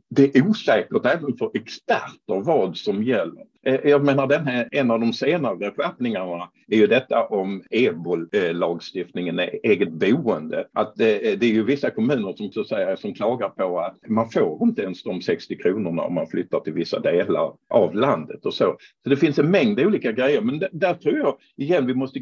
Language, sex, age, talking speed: Swedish, male, 50-69, 185 wpm